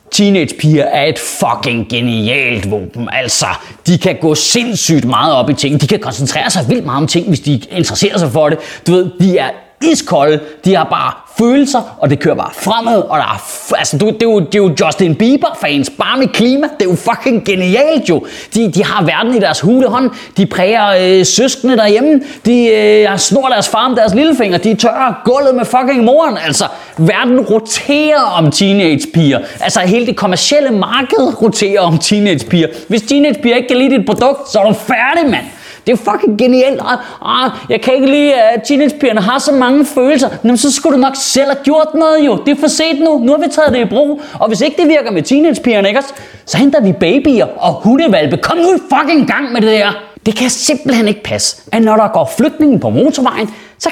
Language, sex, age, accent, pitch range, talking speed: Danish, male, 30-49, native, 185-275 Hz, 210 wpm